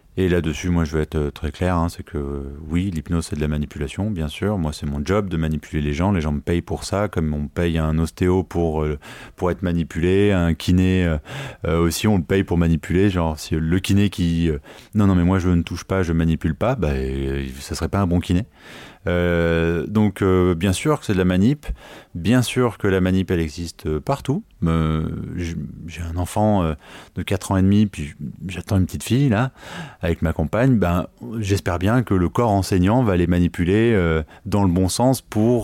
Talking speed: 220 wpm